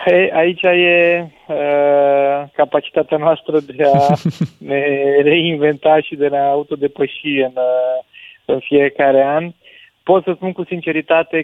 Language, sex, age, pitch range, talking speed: Romanian, male, 20-39, 130-150 Hz, 120 wpm